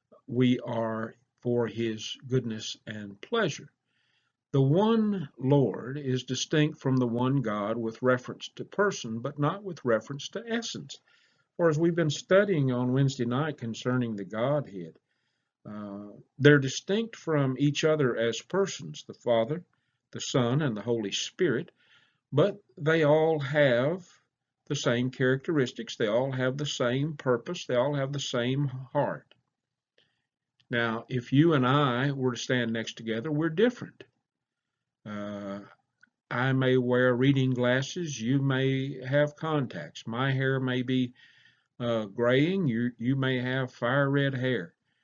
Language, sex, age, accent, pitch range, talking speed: English, male, 50-69, American, 120-145 Hz, 140 wpm